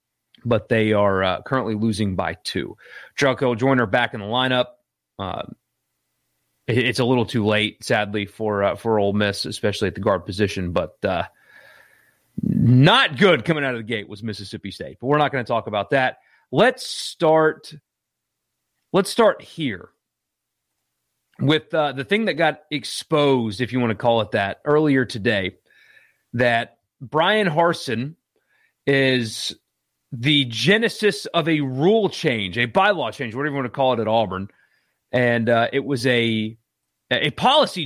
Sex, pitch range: male, 110-150 Hz